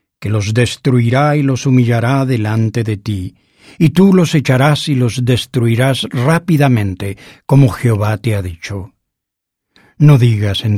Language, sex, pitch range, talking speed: English, male, 115-145 Hz, 135 wpm